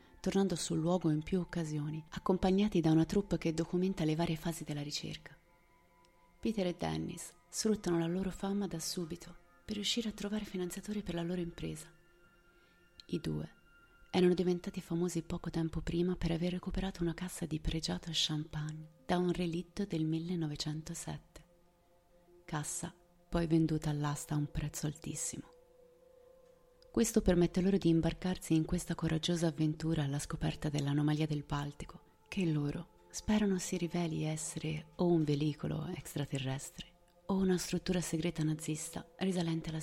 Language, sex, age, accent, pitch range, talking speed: Italian, female, 30-49, native, 155-185 Hz, 145 wpm